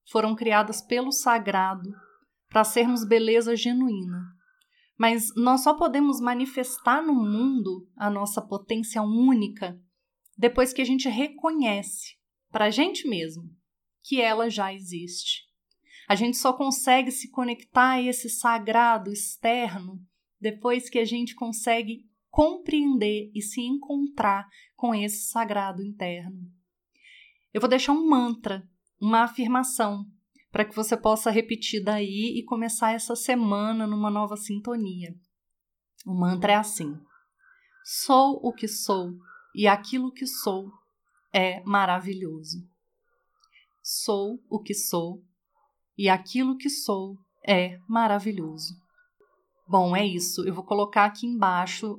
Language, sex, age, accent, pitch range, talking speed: Portuguese, female, 30-49, Brazilian, 200-250 Hz, 125 wpm